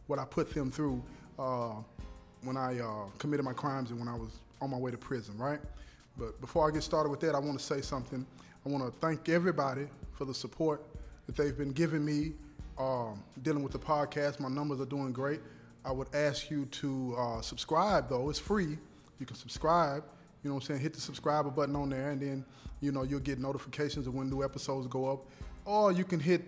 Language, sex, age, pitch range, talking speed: English, male, 20-39, 130-155 Hz, 220 wpm